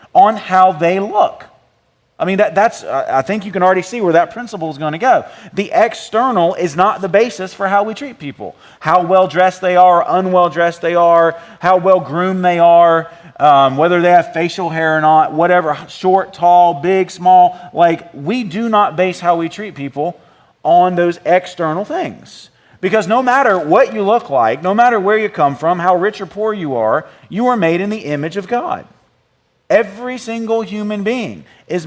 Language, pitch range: English, 170-215 Hz